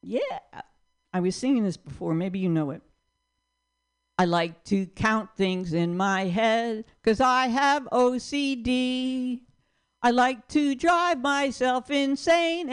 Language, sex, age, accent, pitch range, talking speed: English, female, 60-79, American, 190-270 Hz, 130 wpm